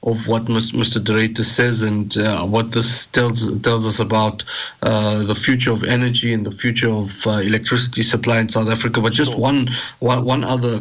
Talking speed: 185 wpm